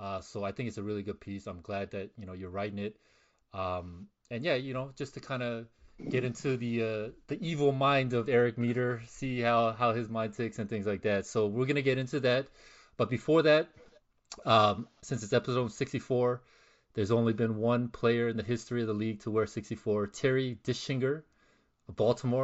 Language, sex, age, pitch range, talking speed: English, male, 30-49, 110-140 Hz, 210 wpm